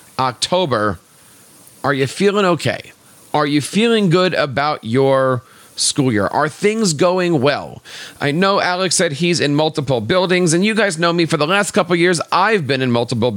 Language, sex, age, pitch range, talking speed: English, male, 40-59, 145-190 Hz, 175 wpm